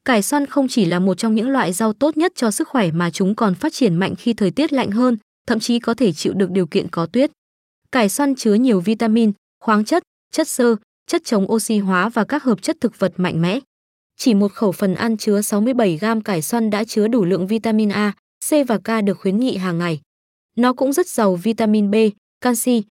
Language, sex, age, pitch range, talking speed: Vietnamese, female, 20-39, 200-250 Hz, 230 wpm